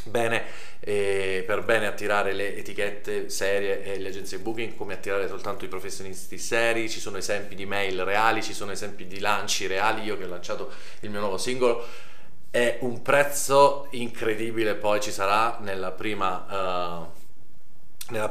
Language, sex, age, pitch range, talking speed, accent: Italian, male, 30-49, 100-140 Hz, 155 wpm, native